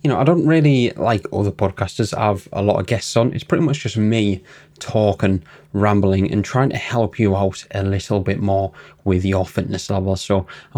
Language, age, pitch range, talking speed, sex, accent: English, 20-39, 100-130 Hz, 210 wpm, male, British